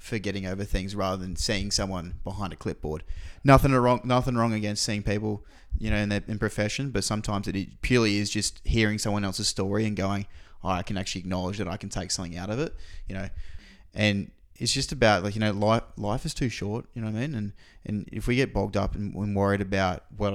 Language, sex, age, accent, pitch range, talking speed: English, male, 20-39, Australian, 95-110 Hz, 235 wpm